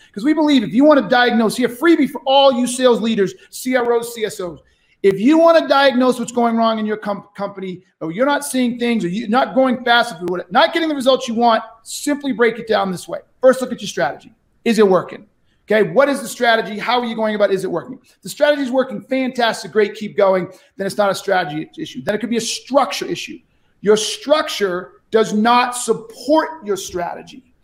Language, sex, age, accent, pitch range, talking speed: English, male, 40-59, American, 205-260 Hz, 220 wpm